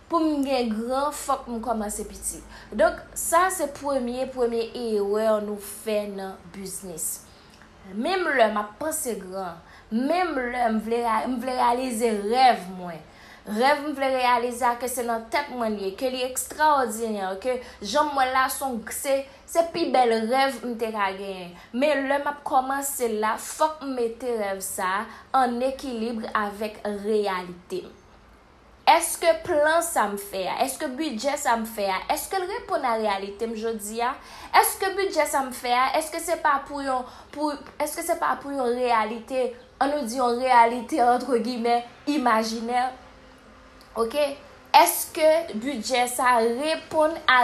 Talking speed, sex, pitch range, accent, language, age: 155 wpm, female, 225-285 Hz, Canadian, French, 20-39